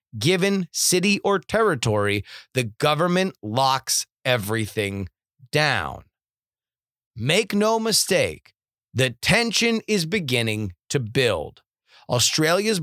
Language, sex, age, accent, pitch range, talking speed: English, male, 30-49, American, 115-185 Hz, 90 wpm